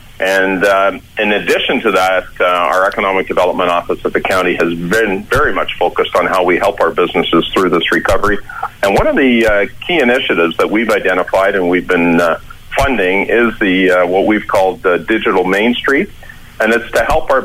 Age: 40-59